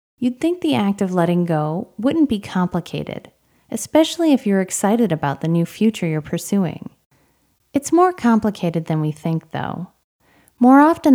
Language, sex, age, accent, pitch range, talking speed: English, female, 30-49, American, 175-255 Hz, 155 wpm